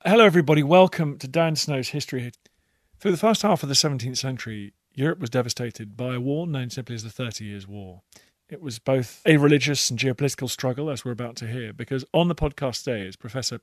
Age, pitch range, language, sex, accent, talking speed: 40-59, 115-150 Hz, English, male, British, 210 wpm